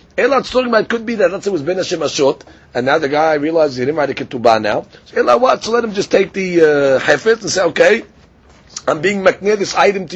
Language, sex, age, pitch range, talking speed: English, male, 40-59, 130-205 Hz, 230 wpm